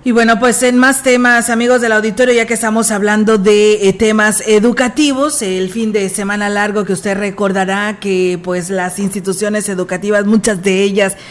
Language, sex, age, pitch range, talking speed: Spanish, female, 40-59, 190-230 Hz, 170 wpm